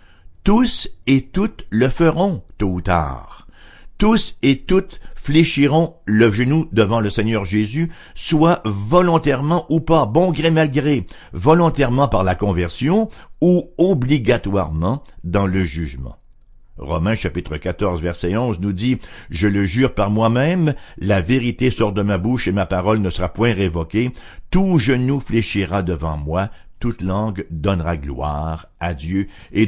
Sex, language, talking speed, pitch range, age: male, English, 145 wpm, 95-135 Hz, 60-79